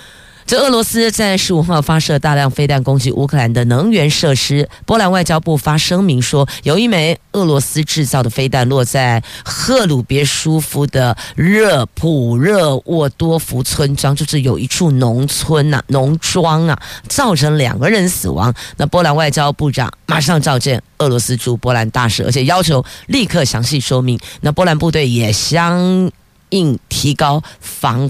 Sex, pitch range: female, 125-165 Hz